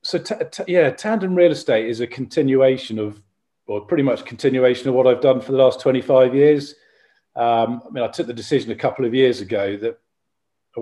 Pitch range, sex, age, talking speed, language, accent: 105-130 Hz, male, 40-59, 215 wpm, English, British